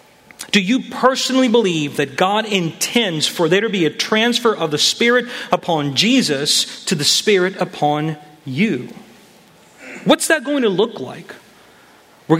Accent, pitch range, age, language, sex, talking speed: American, 155-225 Hz, 40-59, English, male, 145 wpm